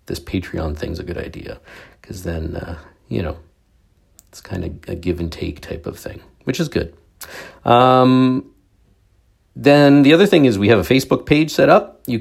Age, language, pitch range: 40-59, English, 85-115 Hz